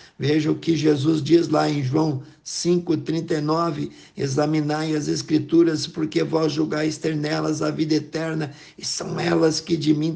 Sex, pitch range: male, 150-170 Hz